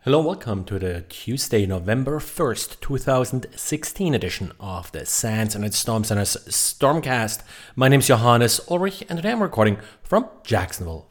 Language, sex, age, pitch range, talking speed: English, male, 30-49, 115-140 Hz, 150 wpm